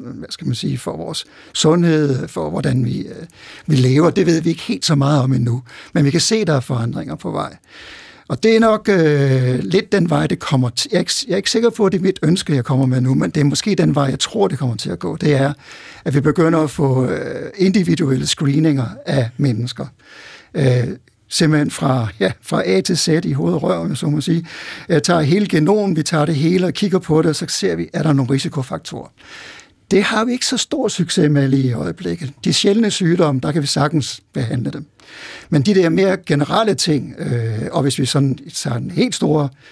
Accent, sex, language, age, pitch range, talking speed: native, male, Danish, 60-79, 130-175 Hz, 230 wpm